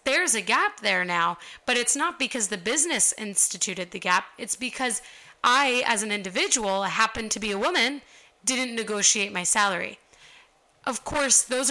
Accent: American